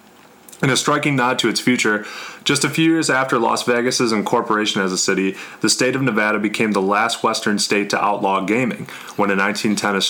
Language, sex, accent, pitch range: English, male, American, 100-130 Hz